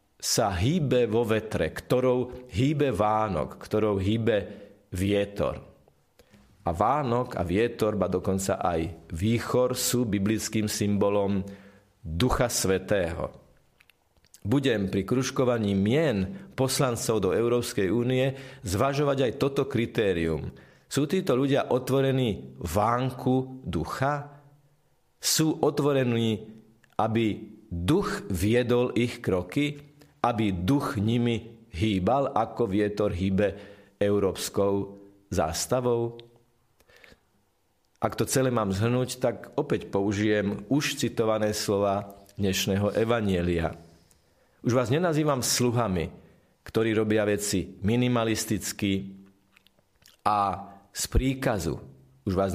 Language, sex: Slovak, male